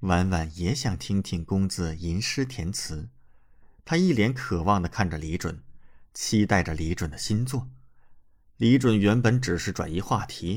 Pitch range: 85-120 Hz